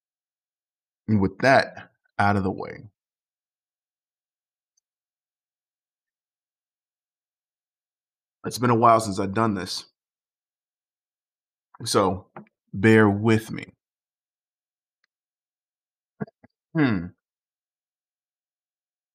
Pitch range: 95-110 Hz